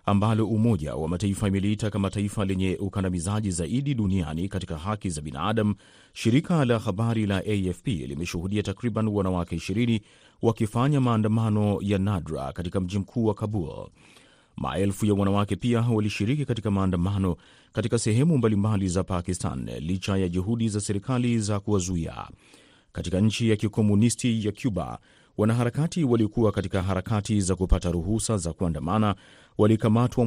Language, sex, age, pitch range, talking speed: Swahili, male, 30-49, 95-115 Hz, 135 wpm